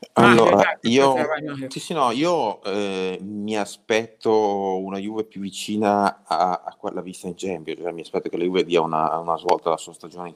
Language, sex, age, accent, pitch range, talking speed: Italian, male, 30-49, native, 85-100 Hz, 190 wpm